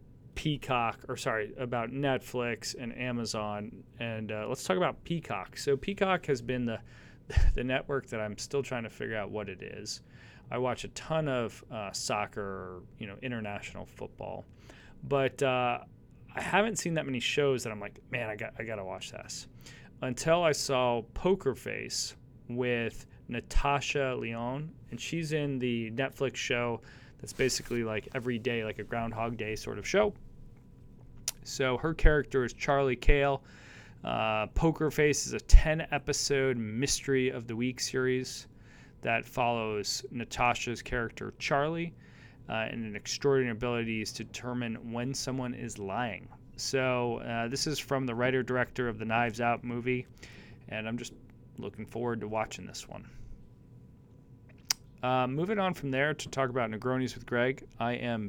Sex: male